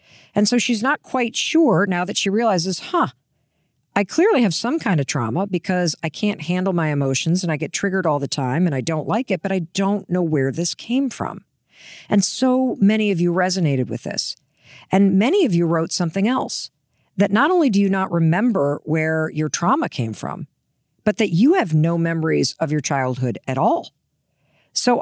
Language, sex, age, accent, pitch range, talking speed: English, female, 50-69, American, 160-230 Hz, 200 wpm